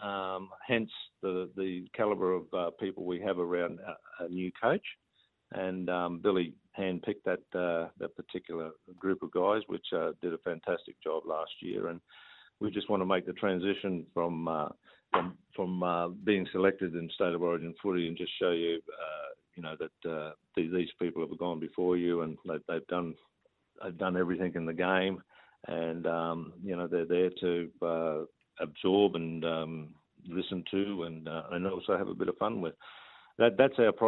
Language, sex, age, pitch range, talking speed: English, male, 50-69, 85-95 Hz, 190 wpm